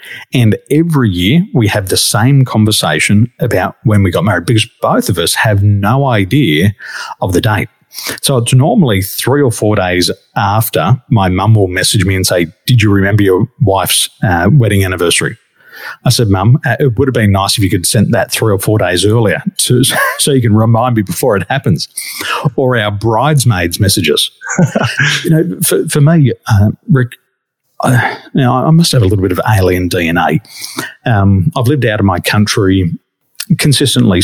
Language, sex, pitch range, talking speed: English, male, 95-130 Hz, 180 wpm